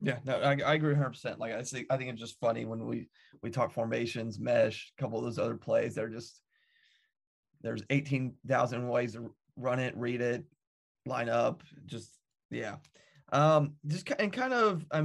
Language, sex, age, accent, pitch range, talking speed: English, male, 20-39, American, 125-150 Hz, 185 wpm